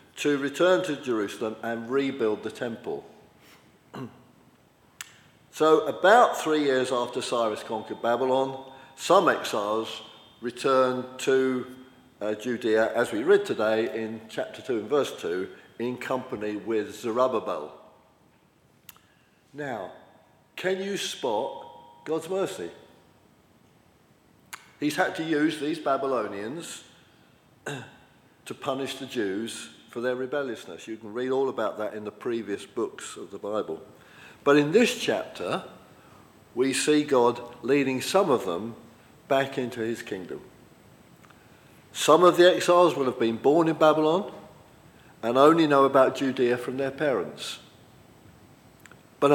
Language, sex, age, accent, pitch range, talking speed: English, male, 50-69, British, 120-155 Hz, 125 wpm